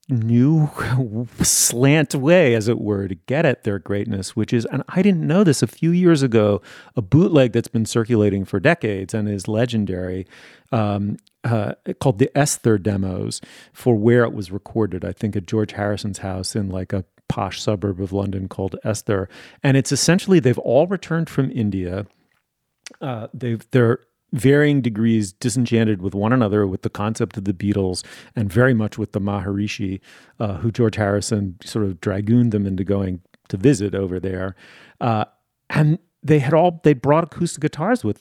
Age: 40-59